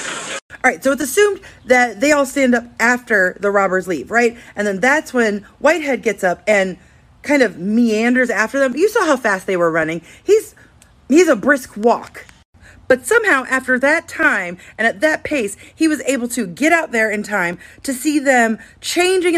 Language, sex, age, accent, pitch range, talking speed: English, female, 30-49, American, 205-290 Hz, 190 wpm